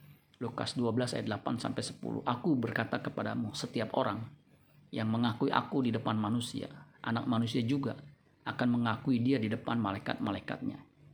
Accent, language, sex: native, Indonesian, male